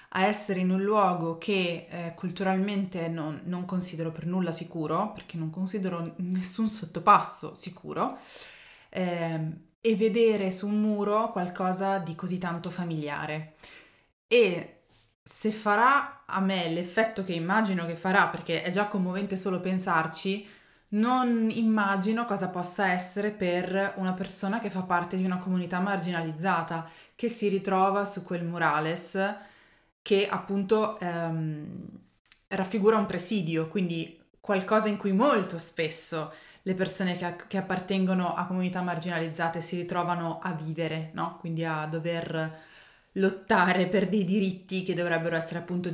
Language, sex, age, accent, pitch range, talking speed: Italian, female, 20-39, native, 170-205 Hz, 135 wpm